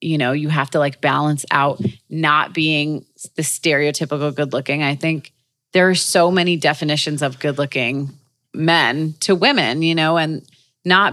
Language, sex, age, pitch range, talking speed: English, female, 30-49, 140-170 Hz, 155 wpm